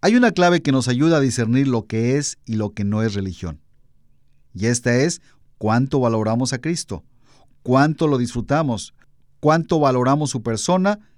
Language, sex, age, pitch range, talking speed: Spanish, male, 40-59, 115-155 Hz, 165 wpm